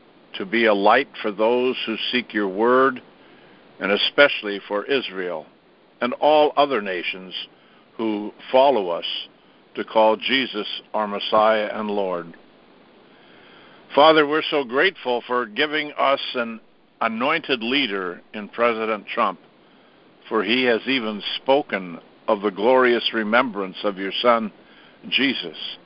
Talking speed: 125 wpm